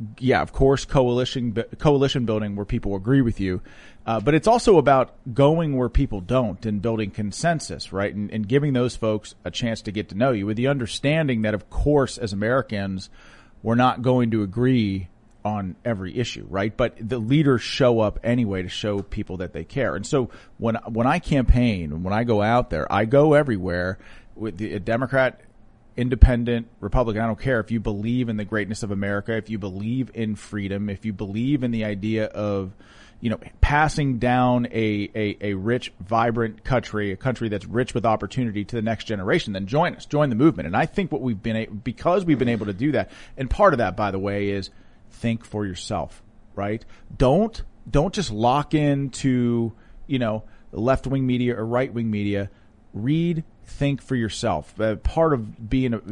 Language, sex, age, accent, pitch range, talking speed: English, male, 40-59, American, 105-125 Hz, 190 wpm